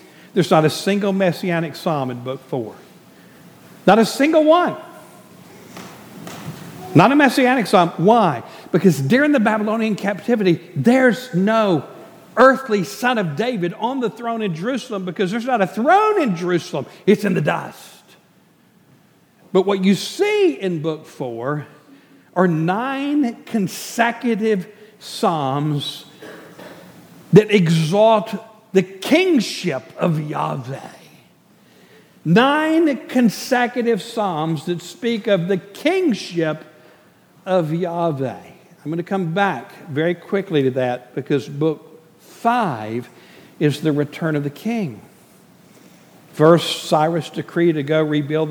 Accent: American